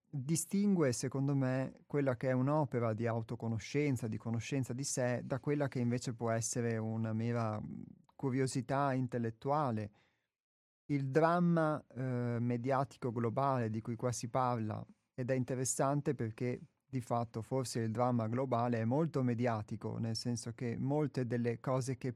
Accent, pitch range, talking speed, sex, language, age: native, 115-135 Hz, 145 wpm, male, Italian, 30-49